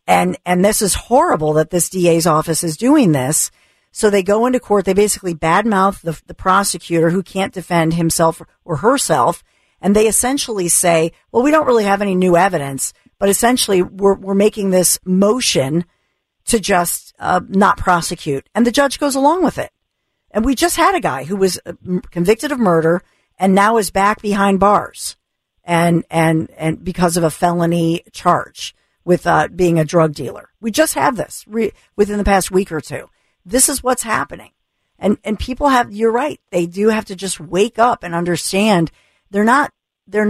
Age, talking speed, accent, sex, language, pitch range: 50-69, 185 wpm, American, female, English, 170-215 Hz